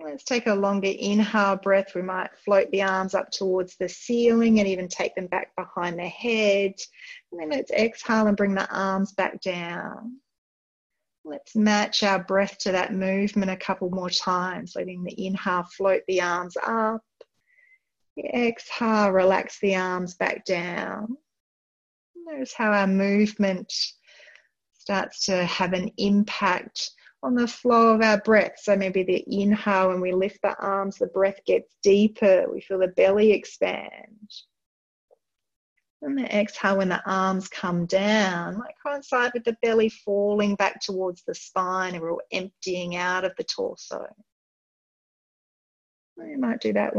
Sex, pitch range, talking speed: female, 190-220 Hz, 150 wpm